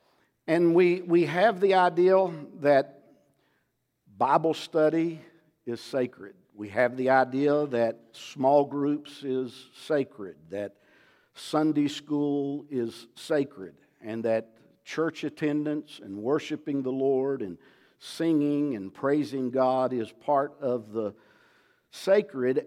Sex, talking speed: male, 115 wpm